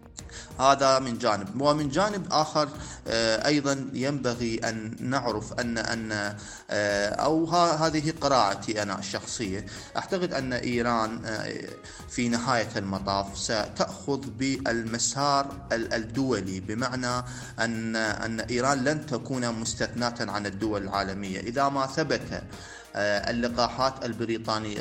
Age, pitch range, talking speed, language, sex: 30-49, 105-130 Hz, 100 wpm, Arabic, male